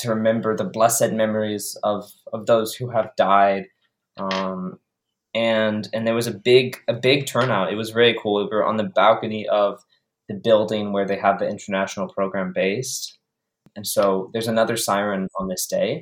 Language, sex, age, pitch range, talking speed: English, male, 20-39, 95-115 Hz, 185 wpm